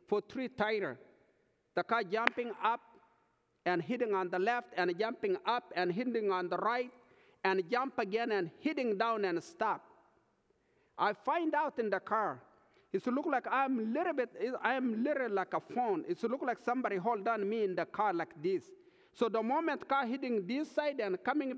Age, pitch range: 50-69, 200-290 Hz